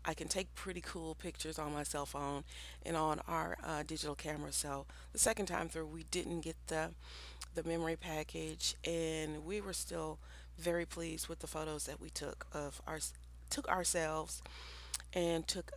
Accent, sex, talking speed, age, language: American, female, 175 wpm, 40-59, English